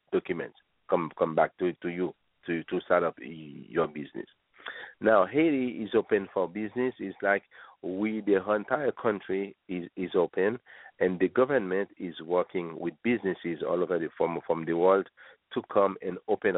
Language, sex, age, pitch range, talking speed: English, male, 50-69, 90-130 Hz, 165 wpm